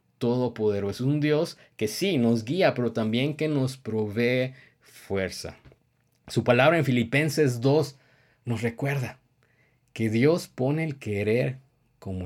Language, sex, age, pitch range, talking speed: Spanish, male, 50-69, 115-140 Hz, 130 wpm